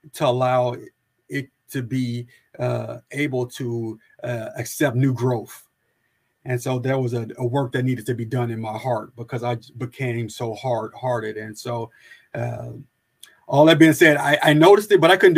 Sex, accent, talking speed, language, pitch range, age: male, American, 185 wpm, English, 120-135 Hz, 30-49